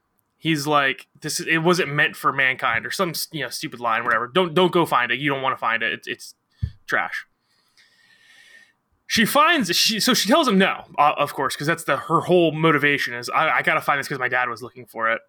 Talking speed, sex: 235 wpm, male